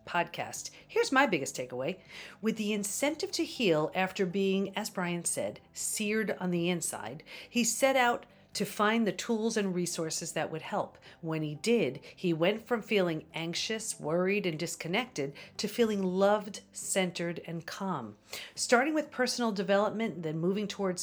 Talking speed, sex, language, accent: 155 wpm, female, English, American